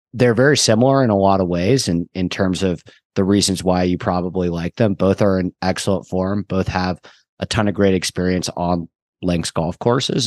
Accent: American